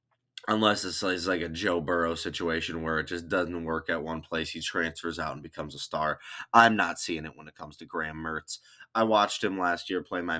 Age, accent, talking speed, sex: 20-39, American, 225 wpm, male